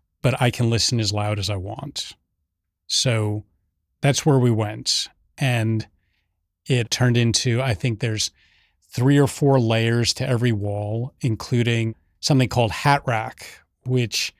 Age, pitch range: 30-49, 110-130 Hz